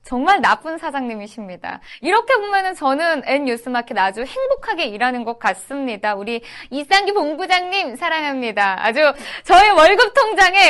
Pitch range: 235-320 Hz